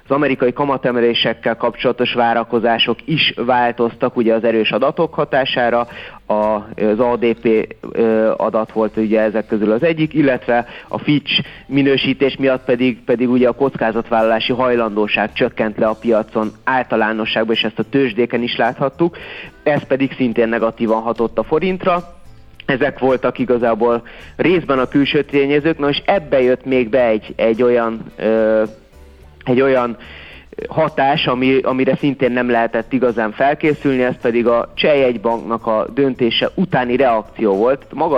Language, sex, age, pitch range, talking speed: Hungarian, male, 30-49, 110-135 Hz, 135 wpm